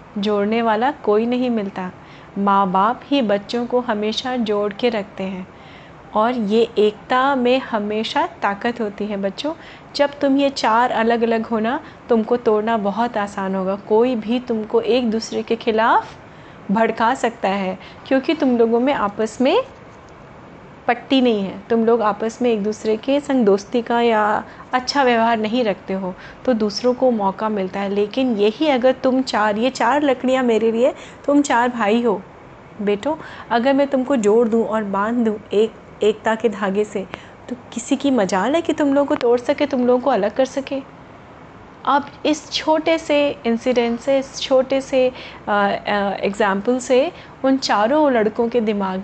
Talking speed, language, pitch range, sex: 170 wpm, Hindi, 210-260 Hz, female